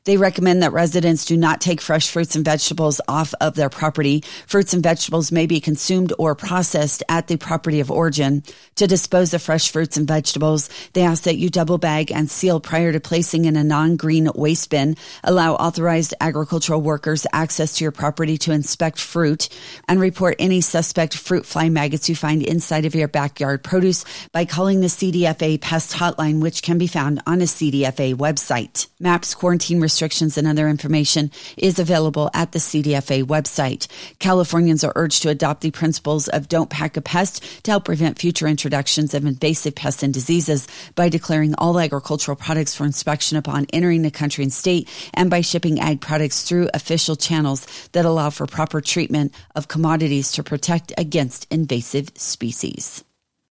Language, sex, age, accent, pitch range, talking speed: English, female, 40-59, American, 150-170 Hz, 175 wpm